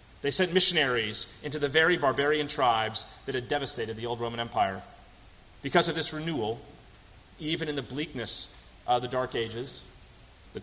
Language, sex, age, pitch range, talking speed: English, male, 30-49, 115-150 Hz, 160 wpm